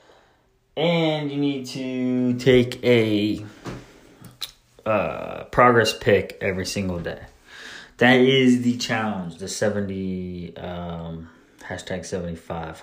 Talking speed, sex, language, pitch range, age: 100 wpm, male, English, 95-135 Hz, 20-39